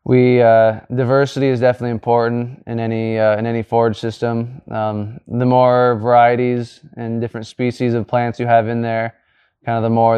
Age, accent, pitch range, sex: 20-39, American, 115-125 Hz, male